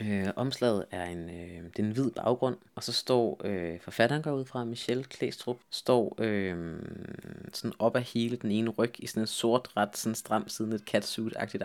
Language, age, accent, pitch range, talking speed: Danish, 20-39, native, 100-120 Hz, 190 wpm